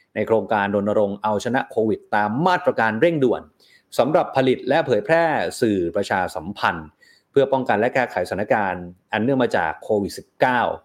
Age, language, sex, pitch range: 30-49, Thai, male, 110-155 Hz